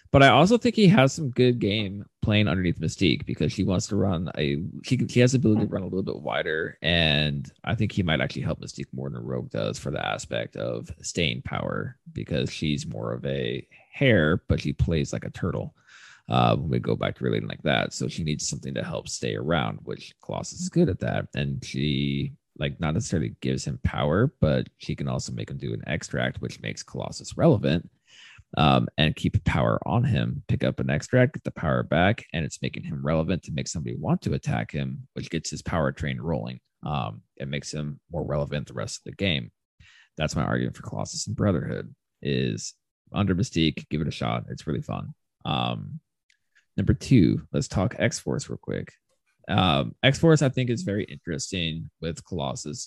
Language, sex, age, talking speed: English, male, 20-39, 205 wpm